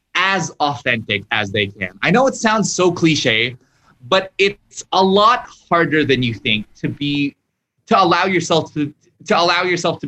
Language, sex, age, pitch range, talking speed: English, male, 20-39, 125-185 Hz, 175 wpm